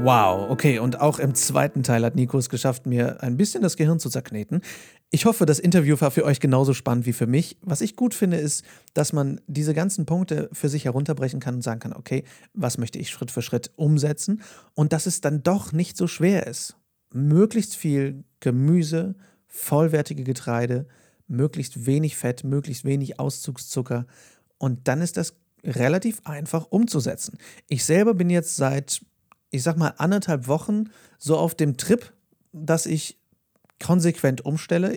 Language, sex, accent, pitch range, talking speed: German, male, German, 130-165 Hz, 170 wpm